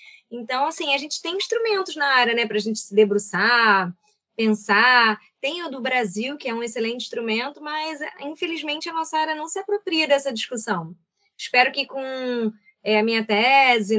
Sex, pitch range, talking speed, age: female, 220-305 Hz, 170 wpm, 20-39